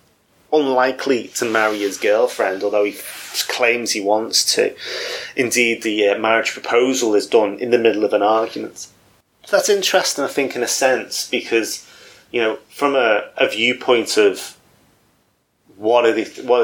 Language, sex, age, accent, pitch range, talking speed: English, male, 30-49, British, 105-150 Hz, 160 wpm